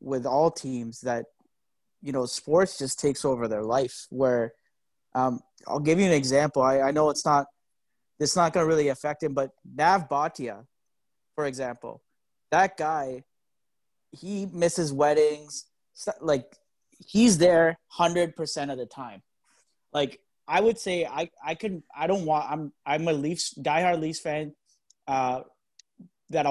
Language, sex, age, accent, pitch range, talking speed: English, male, 30-49, American, 130-160 Hz, 155 wpm